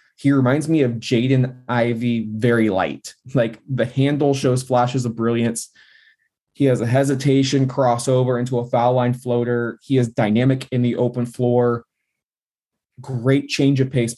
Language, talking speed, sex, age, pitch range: English, 150 wpm, male, 20-39, 120-135 Hz